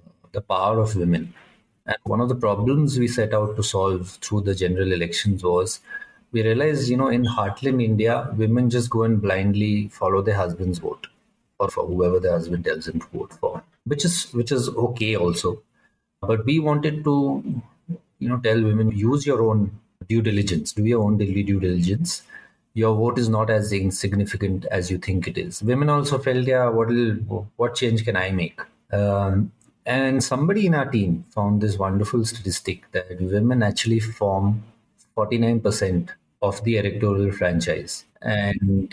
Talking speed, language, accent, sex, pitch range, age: 175 wpm, English, Indian, male, 95-120 Hz, 30-49